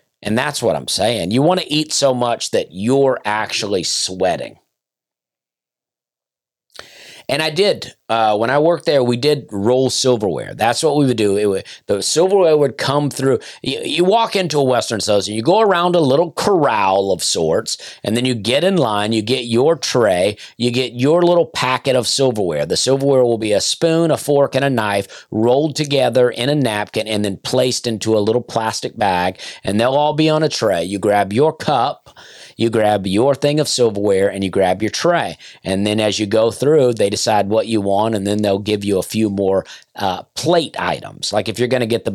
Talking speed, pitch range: 205 wpm, 105-140 Hz